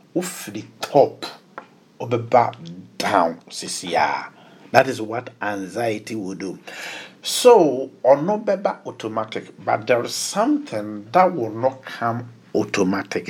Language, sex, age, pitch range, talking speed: English, male, 50-69, 105-150 Hz, 115 wpm